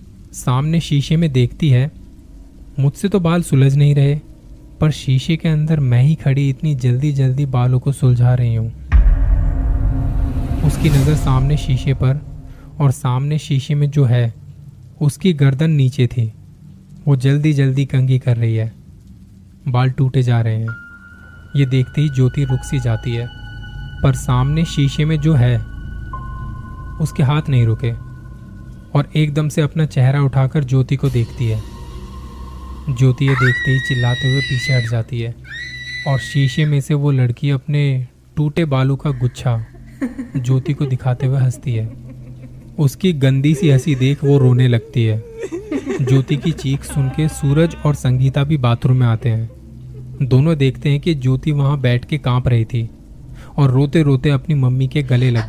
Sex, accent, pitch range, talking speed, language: male, native, 120-145 Hz, 160 wpm, Hindi